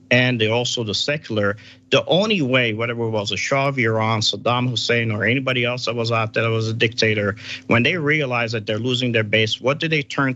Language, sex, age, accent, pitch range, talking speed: English, male, 50-69, American, 110-130 Hz, 230 wpm